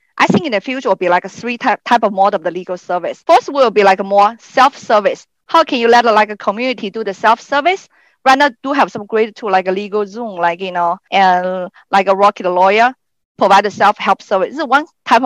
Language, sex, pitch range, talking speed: English, female, 195-265 Hz, 250 wpm